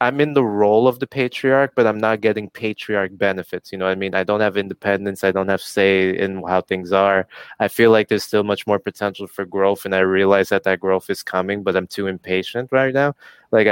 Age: 20-39